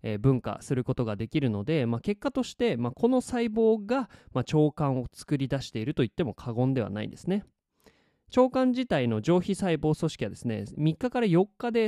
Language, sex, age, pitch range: Japanese, male, 20-39, 115-185 Hz